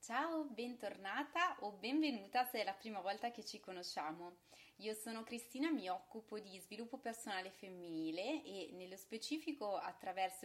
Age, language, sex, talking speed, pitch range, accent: 20-39, Italian, female, 145 wpm, 185-230 Hz, native